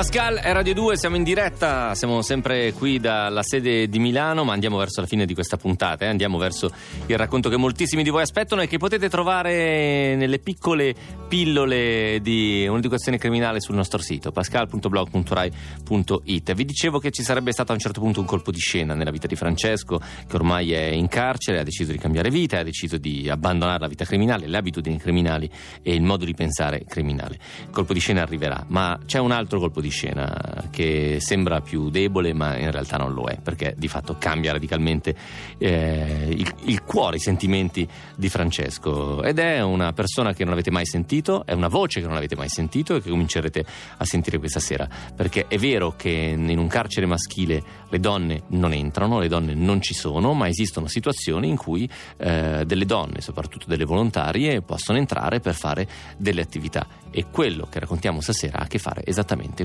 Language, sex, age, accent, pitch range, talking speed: Italian, male, 30-49, native, 80-115 Hz, 195 wpm